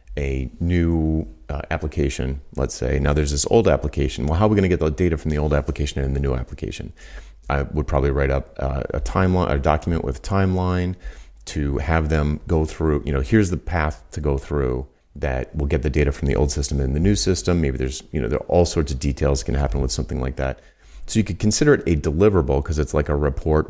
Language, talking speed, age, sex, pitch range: English, 240 wpm, 40-59, male, 70-90 Hz